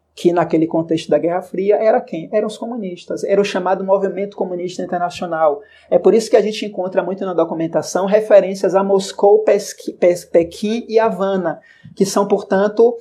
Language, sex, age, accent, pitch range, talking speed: Portuguese, male, 20-39, Brazilian, 175-225 Hz, 165 wpm